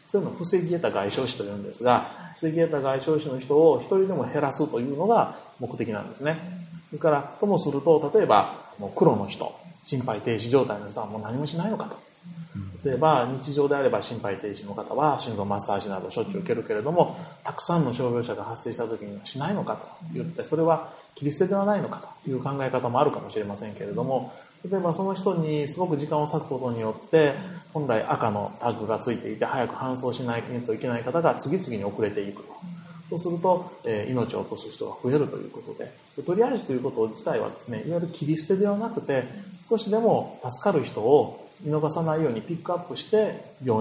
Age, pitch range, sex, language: 30-49, 125-180 Hz, male, Japanese